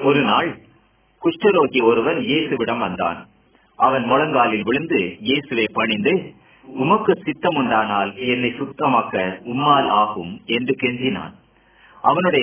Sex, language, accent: male, Hindi, native